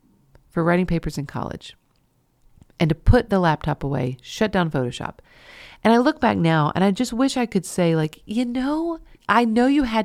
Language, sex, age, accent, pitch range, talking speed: English, female, 40-59, American, 165-225 Hz, 195 wpm